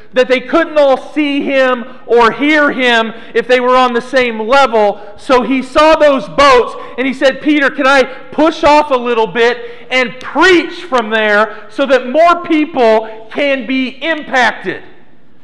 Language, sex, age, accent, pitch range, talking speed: English, male, 40-59, American, 245-315 Hz, 165 wpm